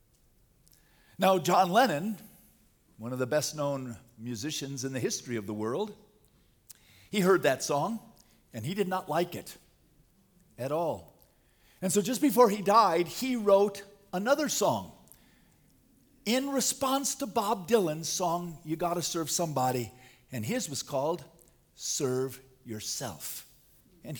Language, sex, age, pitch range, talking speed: English, male, 50-69, 135-210 Hz, 130 wpm